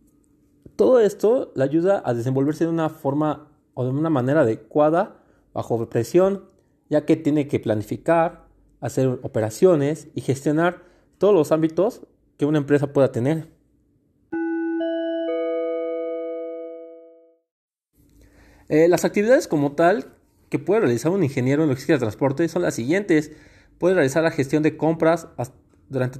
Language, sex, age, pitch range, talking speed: Spanish, male, 30-49, 130-165 Hz, 130 wpm